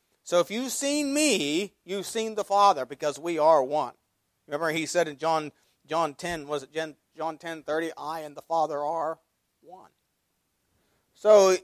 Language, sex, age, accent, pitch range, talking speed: English, male, 40-59, American, 150-195 Hz, 165 wpm